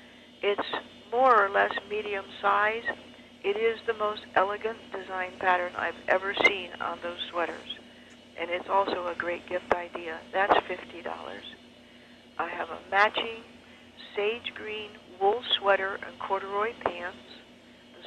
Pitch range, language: 180-210 Hz, English